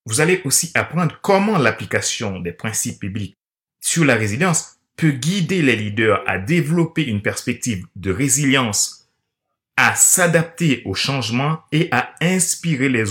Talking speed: 135 wpm